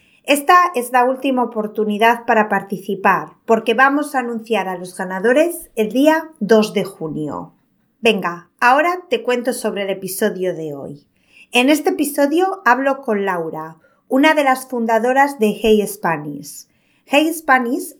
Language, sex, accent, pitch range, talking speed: Spanish, female, Spanish, 200-270 Hz, 145 wpm